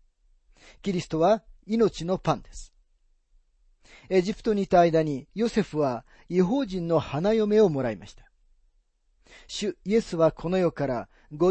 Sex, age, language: male, 40-59, Japanese